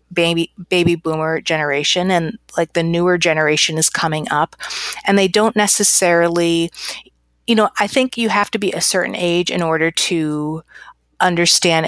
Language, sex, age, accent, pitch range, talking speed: English, female, 30-49, American, 160-195 Hz, 155 wpm